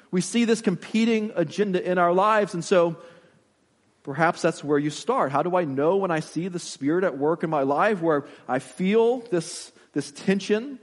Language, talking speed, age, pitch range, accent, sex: English, 200 wpm, 30-49, 160-215 Hz, American, male